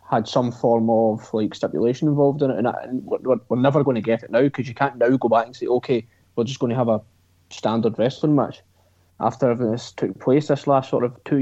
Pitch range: 105-140 Hz